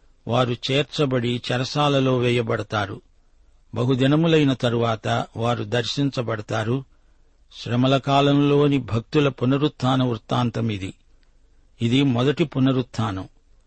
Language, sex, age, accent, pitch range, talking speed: Telugu, male, 50-69, native, 115-140 Hz, 70 wpm